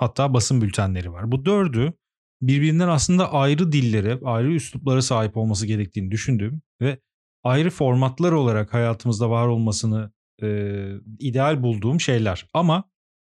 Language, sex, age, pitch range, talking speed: Turkish, male, 40-59, 120-165 Hz, 125 wpm